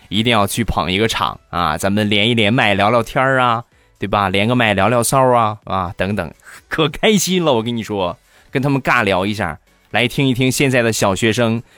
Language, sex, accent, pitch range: Chinese, male, native, 100-130 Hz